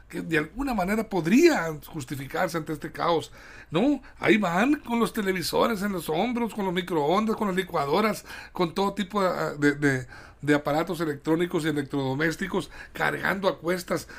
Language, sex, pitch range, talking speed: Spanish, male, 145-195 Hz, 150 wpm